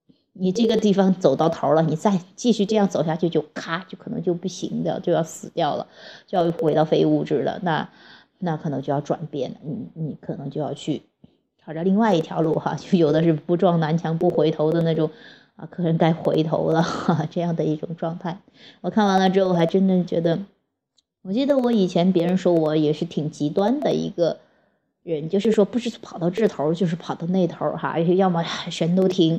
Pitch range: 160-195 Hz